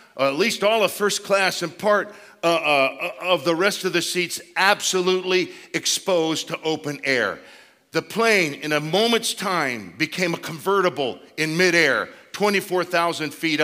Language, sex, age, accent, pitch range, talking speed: English, male, 50-69, American, 160-200 Hz, 155 wpm